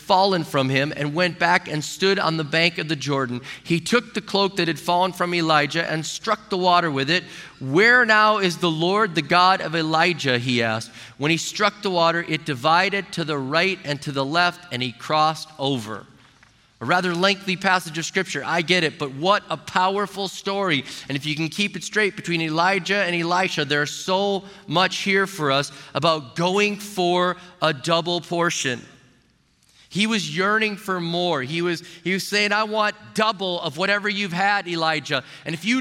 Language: English